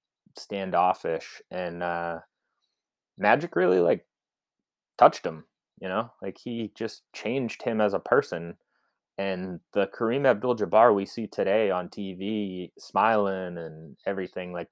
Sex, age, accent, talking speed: male, 30-49, American, 130 wpm